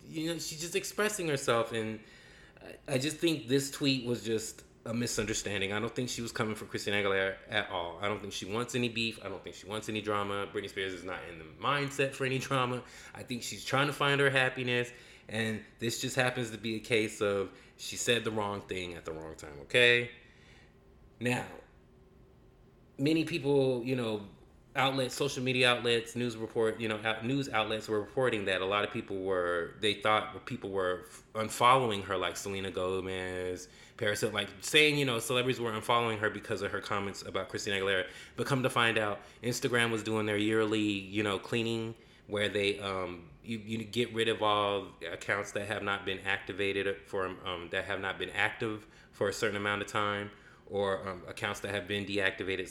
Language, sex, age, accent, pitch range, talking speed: English, male, 20-39, American, 100-125 Hz, 200 wpm